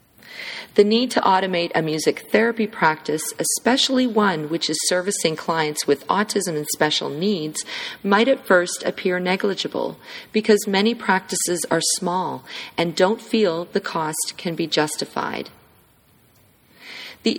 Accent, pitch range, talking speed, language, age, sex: American, 165-215 Hz, 130 wpm, English, 40-59, female